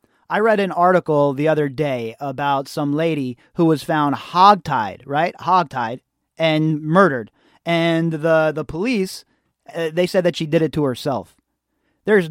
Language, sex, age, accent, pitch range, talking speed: English, male, 30-49, American, 145-180 Hz, 155 wpm